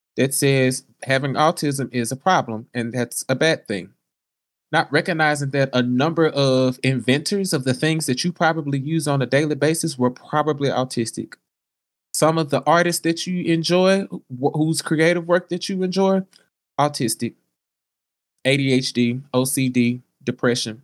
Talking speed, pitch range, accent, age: 145 wpm, 125-165 Hz, American, 20-39